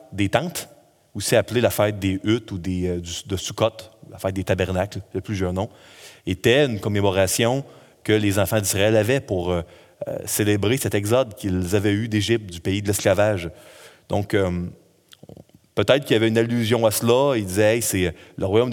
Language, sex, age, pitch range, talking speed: French, male, 30-49, 95-115 Hz, 195 wpm